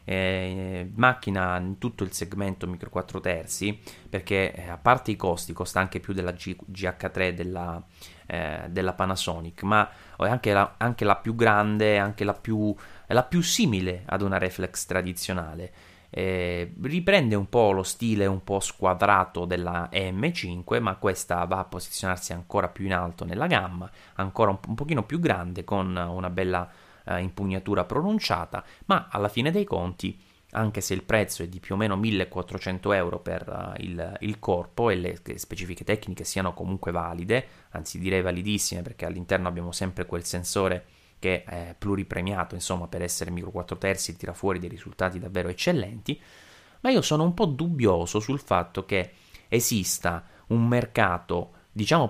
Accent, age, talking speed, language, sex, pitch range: native, 20-39, 165 wpm, Italian, male, 90-105 Hz